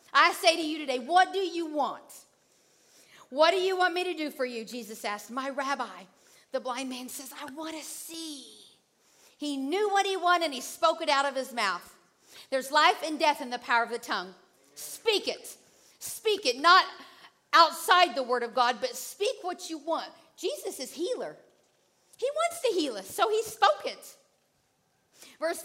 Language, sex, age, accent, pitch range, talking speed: English, female, 50-69, American, 265-365 Hz, 190 wpm